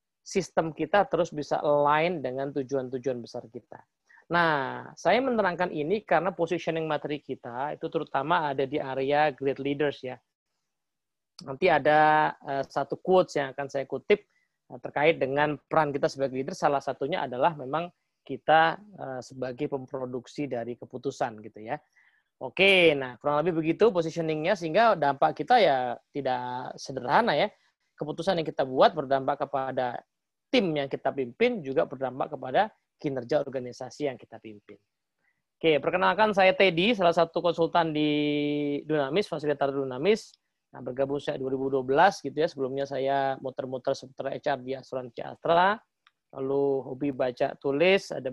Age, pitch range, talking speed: 20-39, 130-160 Hz, 140 wpm